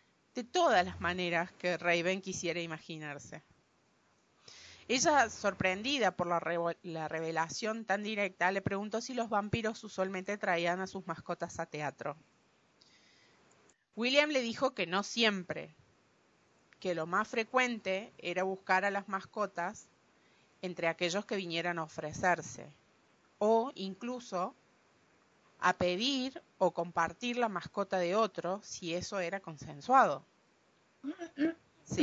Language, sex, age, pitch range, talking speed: English, female, 30-49, 170-215 Hz, 120 wpm